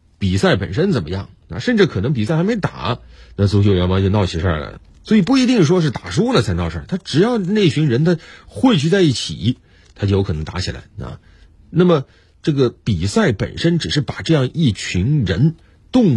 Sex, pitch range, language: male, 95-155 Hz, Chinese